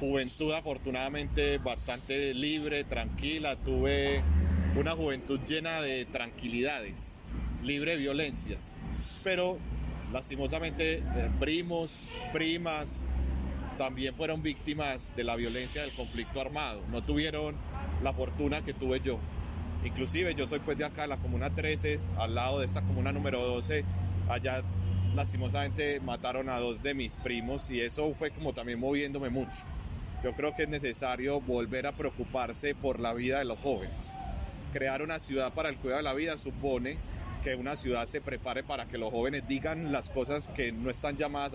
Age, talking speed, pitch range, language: 30-49, 150 wpm, 100-140 Hz, English